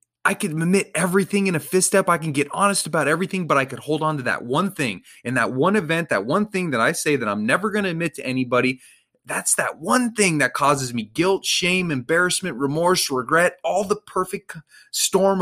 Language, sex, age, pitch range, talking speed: English, male, 30-49, 130-185 Hz, 220 wpm